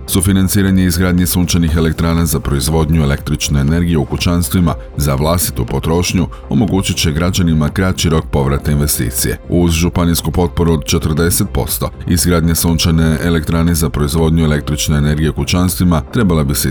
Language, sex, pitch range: Croatian, male, 75-90 Hz